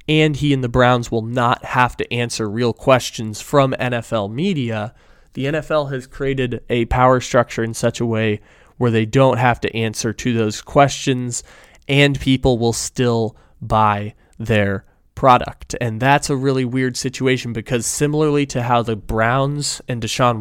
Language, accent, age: English, American, 20-39